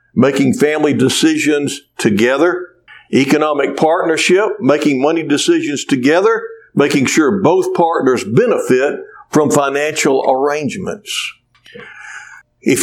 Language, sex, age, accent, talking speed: English, male, 60-79, American, 90 wpm